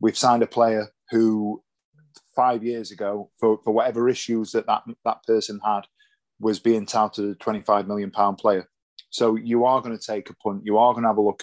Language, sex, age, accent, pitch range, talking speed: English, male, 20-39, British, 105-120 Hz, 210 wpm